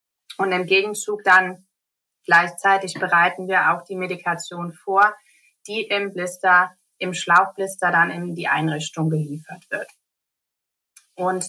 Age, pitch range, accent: 30-49, 175-195 Hz, German